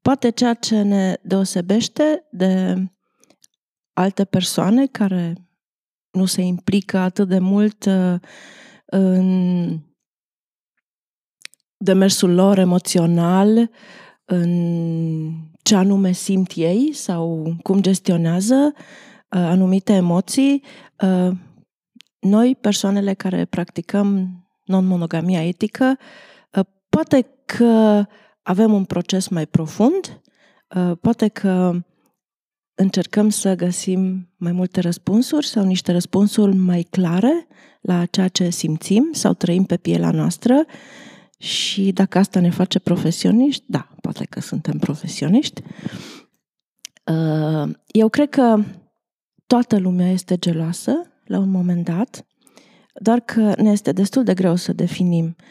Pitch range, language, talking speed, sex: 180-215 Hz, Romanian, 105 wpm, female